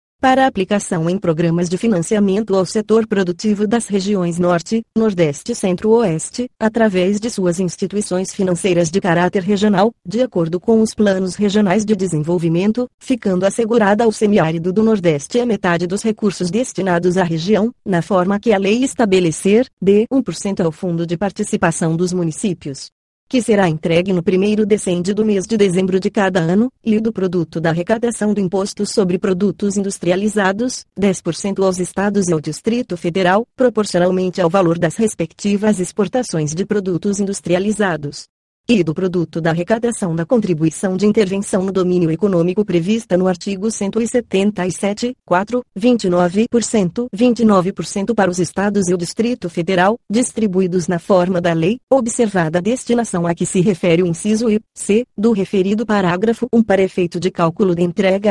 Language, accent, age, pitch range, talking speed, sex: Portuguese, Brazilian, 30-49, 180-220 Hz, 155 wpm, female